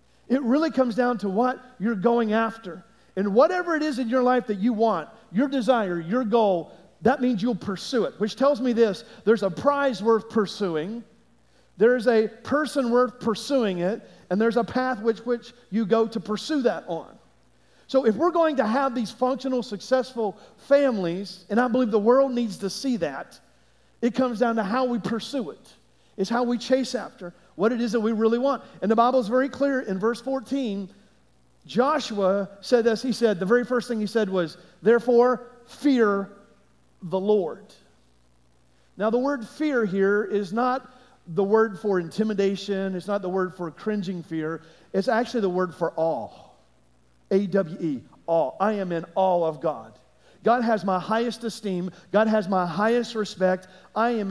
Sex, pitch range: male, 190-245 Hz